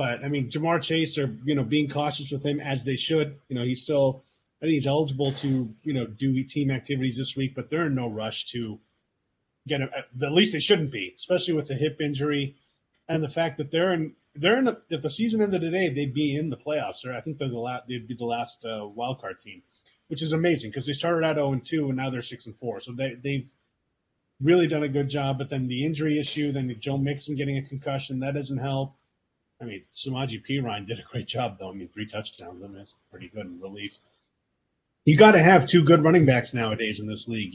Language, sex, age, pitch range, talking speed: English, male, 30-49, 125-155 Hz, 245 wpm